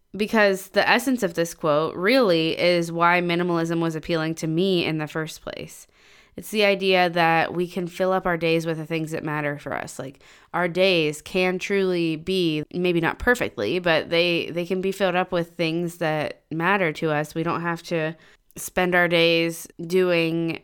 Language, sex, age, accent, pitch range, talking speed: English, female, 20-39, American, 160-185 Hz, 190 wpm